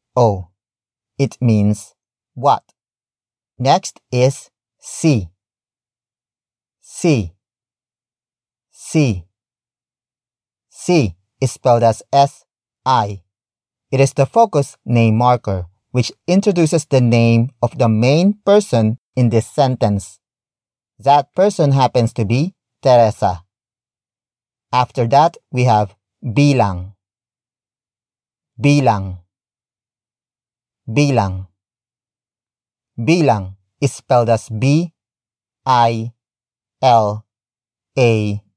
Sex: male